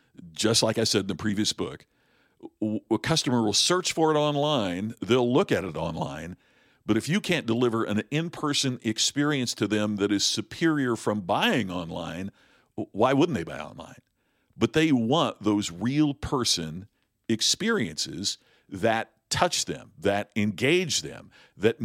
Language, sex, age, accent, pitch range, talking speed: English, male, 50-69, American, 100-125 Hz, 150 wpm